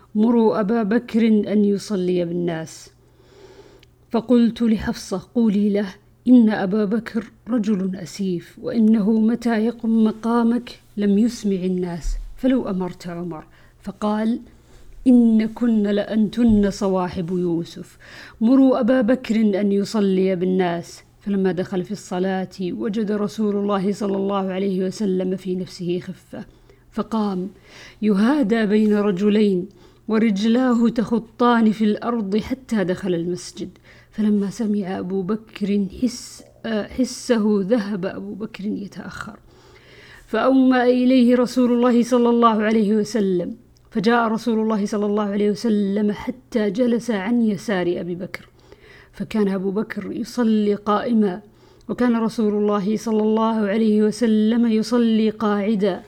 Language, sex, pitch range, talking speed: Arabic, female, 195-230 Hz, 115 wpm